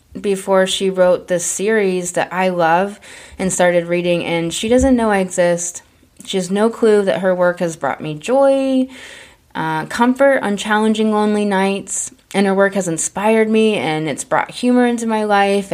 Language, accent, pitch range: English, American, 170-215 Hz